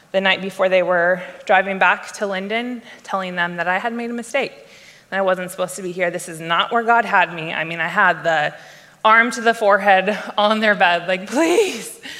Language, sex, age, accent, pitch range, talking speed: English, female, 20-39, American, 185-220 Hz, 220 wpm